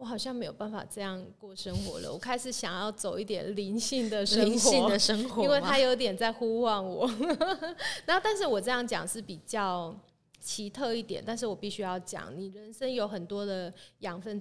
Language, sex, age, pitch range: Chinese, female, 20-39, 185-245 Hz